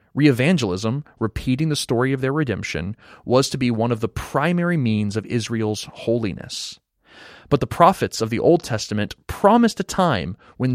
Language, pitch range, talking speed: English, 110-150 Hz, 160 wpm